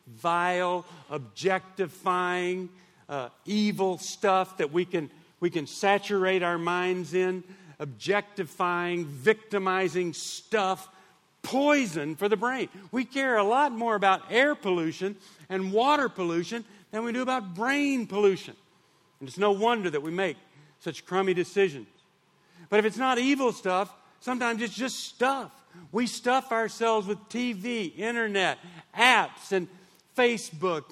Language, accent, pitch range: English, American, 175-220 Hz